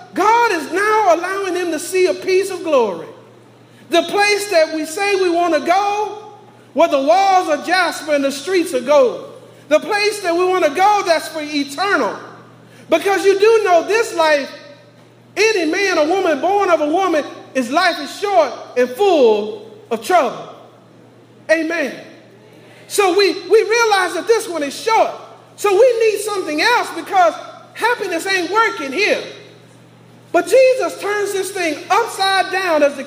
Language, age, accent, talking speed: English, 40-59, American, 165 wpm